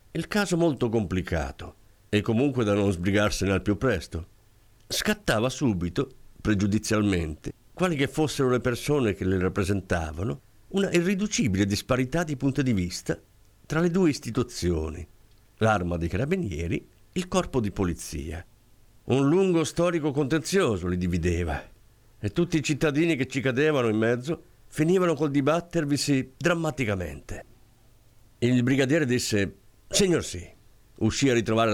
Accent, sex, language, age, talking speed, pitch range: native, male, Italian, 50-69, 130 wpm, 100-135 Hz